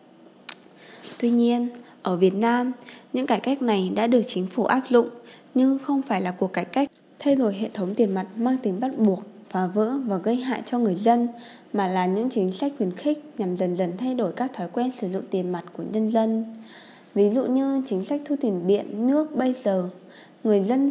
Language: Vietnamese